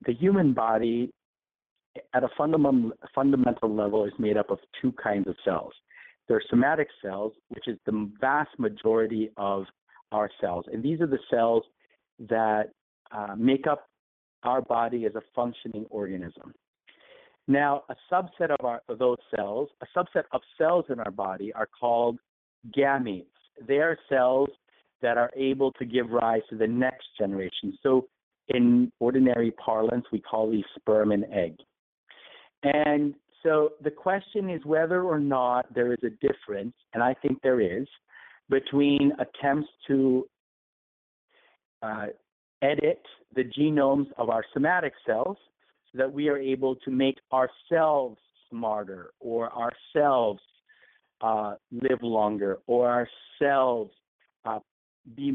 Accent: American